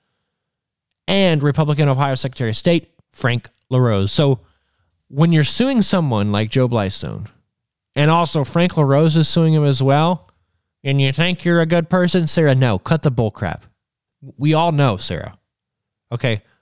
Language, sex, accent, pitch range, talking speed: English, male, American, 110-150 Hz, 155 wpm